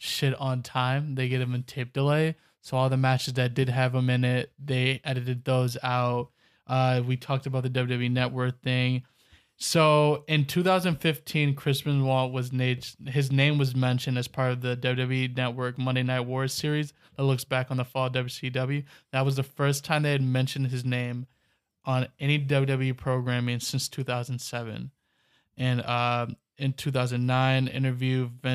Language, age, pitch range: English, 20-39, 125-135 Hz